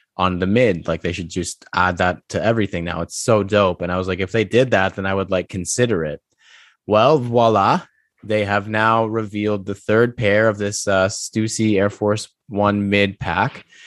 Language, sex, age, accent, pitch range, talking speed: English, male, 20-39, American, 90-110 Hz, 205 wpm